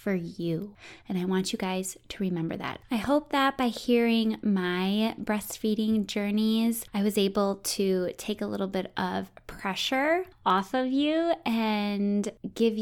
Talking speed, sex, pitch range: 155 wpm, female, 185-235 Hz